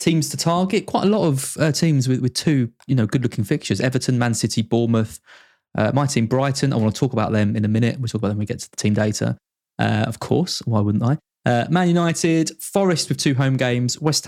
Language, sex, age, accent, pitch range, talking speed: English, male, 20-39, British, 105-140 Hz, 250 wpm